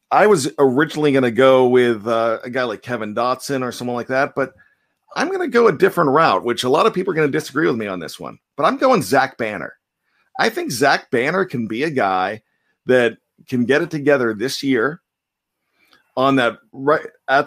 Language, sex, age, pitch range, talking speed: English, male, 40-59, 120-145 Hz, 215 wpm